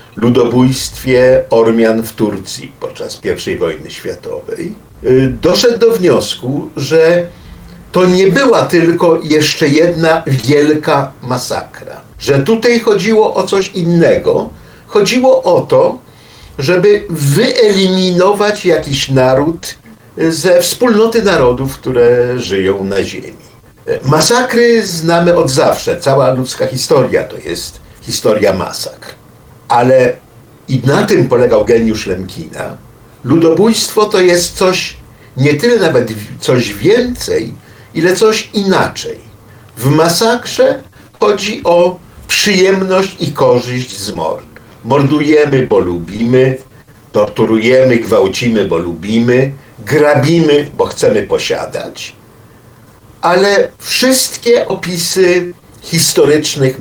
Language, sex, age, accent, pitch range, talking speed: Polish, male, 50-69, native, 125-200 Hz, 100 wpm